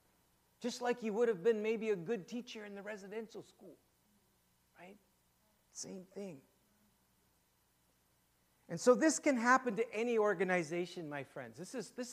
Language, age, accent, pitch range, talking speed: English, 60-79, American, 175-235 Hz, 145 wpm